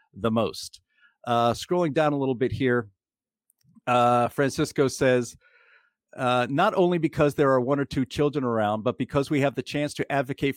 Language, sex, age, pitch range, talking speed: English, male, 50-69, 120-150 Hz, 175 wpm